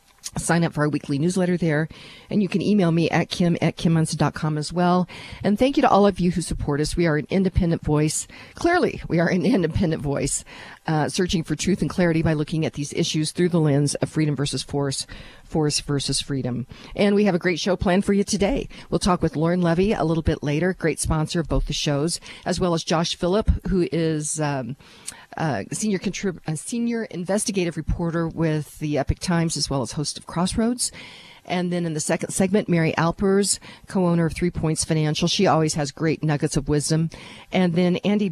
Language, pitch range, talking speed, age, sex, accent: English, 155-190 Hz, 205 wpm, 50-69, female, American